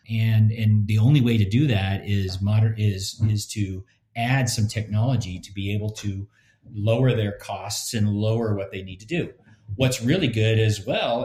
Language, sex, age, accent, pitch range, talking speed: English, male, 40-59, American, 100-115 Hz, 185 wpm